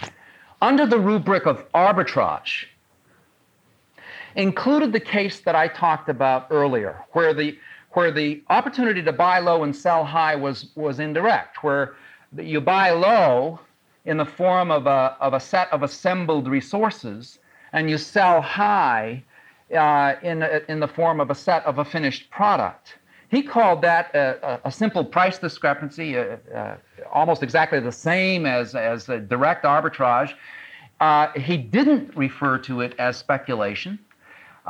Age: 50-69